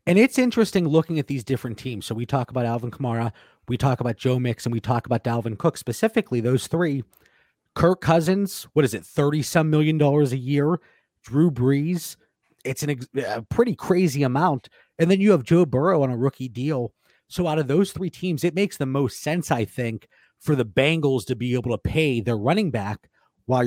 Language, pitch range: English, 125-165 Hz